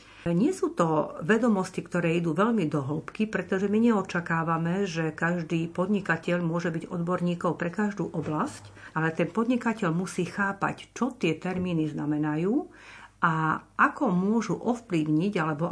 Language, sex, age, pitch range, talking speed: Slovak, female, 50-69, 165-210 Hz, 135 wpm